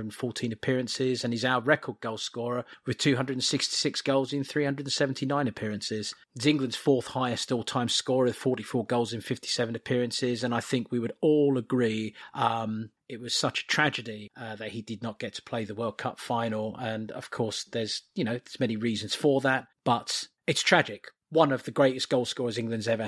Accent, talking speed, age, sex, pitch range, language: British, 190 wpm, 30-49, male, 115-145 Hz, English